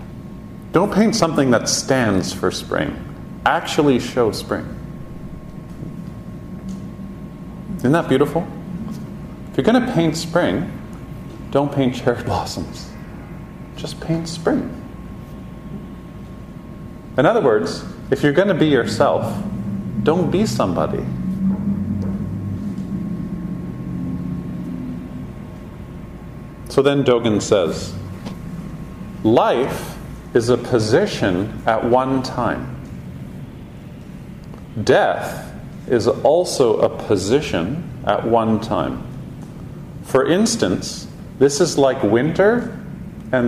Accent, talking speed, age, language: American, 90 wpm, 40-59, English